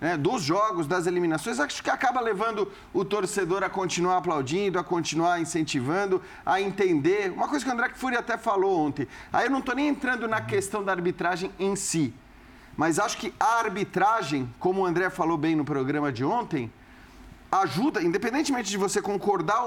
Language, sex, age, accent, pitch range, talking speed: Portuguese, male, 40-59, Brazilian, 165-220 Hz, 180 wpm